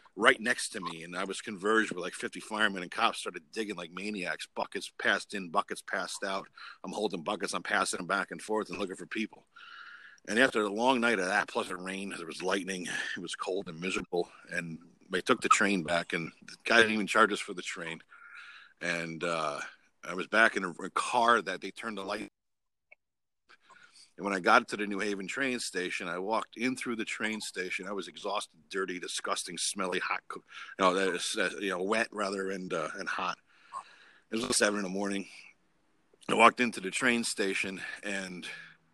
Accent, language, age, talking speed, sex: American, English, 50-69, 200 wpm, male